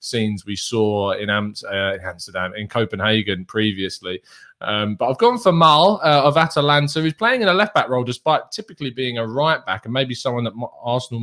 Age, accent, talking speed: 20-39, British, 185 wpm